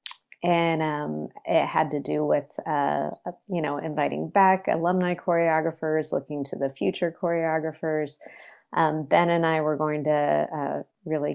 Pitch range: 150-175 Hz